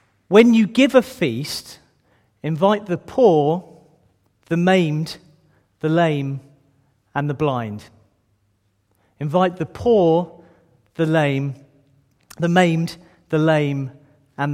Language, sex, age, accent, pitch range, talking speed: English, male, 40-59, British, 125-195 Hz, 105 wpm